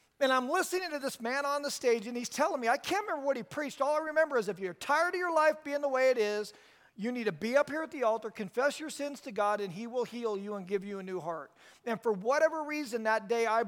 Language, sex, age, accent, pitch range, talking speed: English, male, 40-59, American, 210-285 Hz, 290 wpm